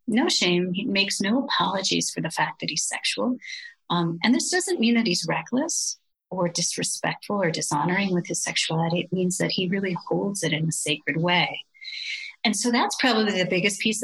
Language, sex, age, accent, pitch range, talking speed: English, female, 40-59, American, 170-235 Hz, 190 wpm